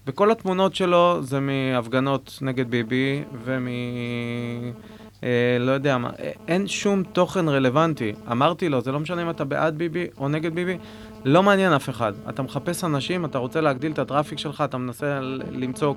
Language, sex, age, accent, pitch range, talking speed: Hebrew, male, 20-39, native, 125-170 Hz, 165 wpm